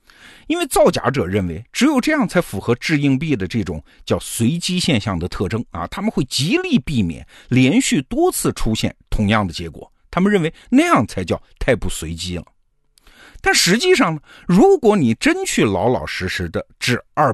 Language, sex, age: Chinese, male, 50-69